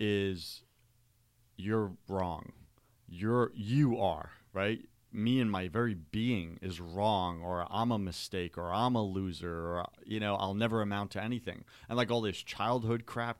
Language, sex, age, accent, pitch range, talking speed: English, male, 30-49, American, 95-120 Hz, 160 wpm